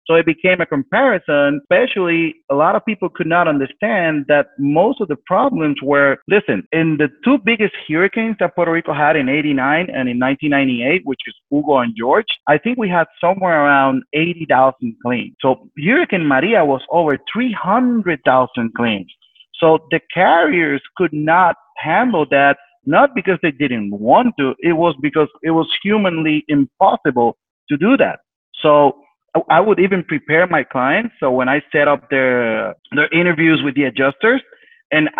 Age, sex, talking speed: 30-49, male, 165 wpm